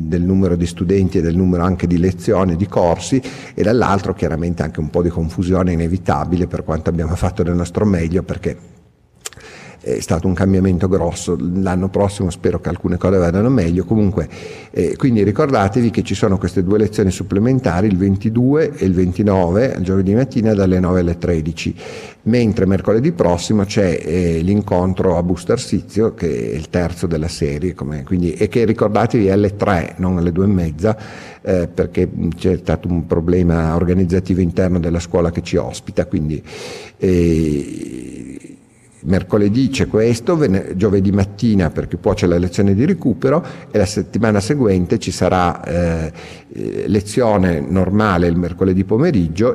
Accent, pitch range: native, 85-105 Hz